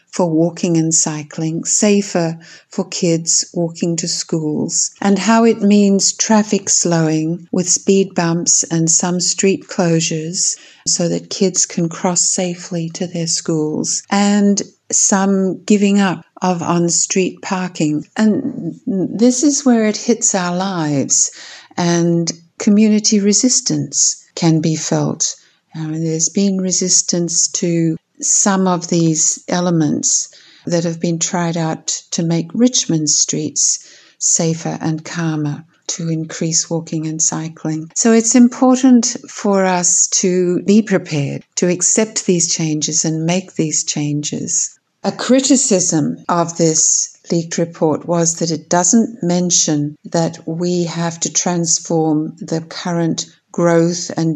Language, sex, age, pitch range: English, female, 60-79, 160-190 Hz